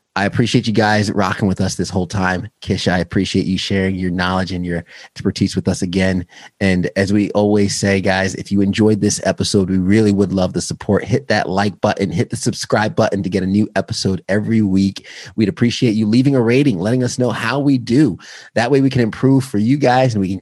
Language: English